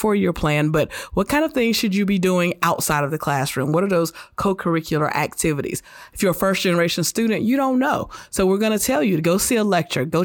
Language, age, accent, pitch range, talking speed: English, 30-49, American, 160-185 Hz, 235 wpm